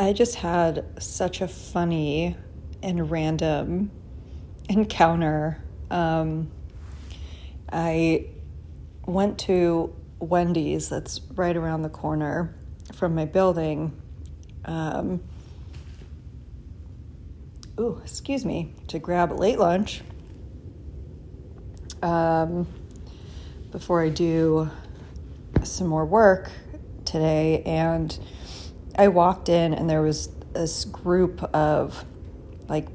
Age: 30-49